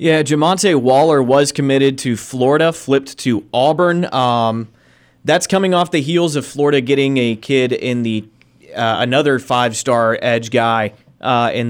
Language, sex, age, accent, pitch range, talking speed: English, male, 30-49, American, 125-145 Hz, 155 wpm